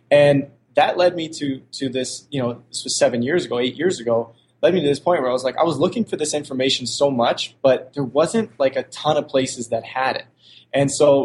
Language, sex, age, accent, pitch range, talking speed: English, male, 20-39, American, 120-145 Hz, 255 wpm